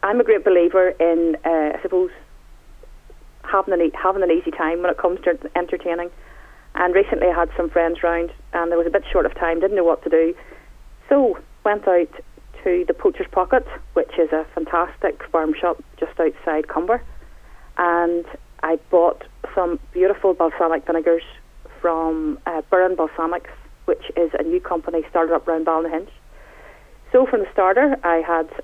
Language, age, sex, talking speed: English, 30-49, female, 170 wpm